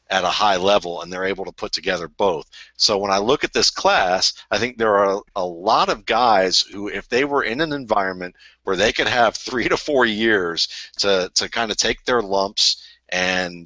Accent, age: American, 50-69